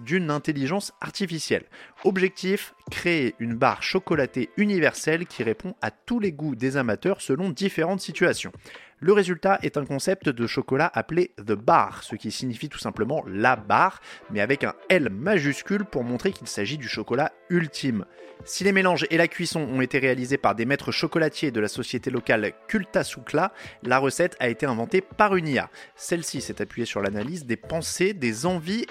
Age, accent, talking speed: 30-49, French, 185 wpm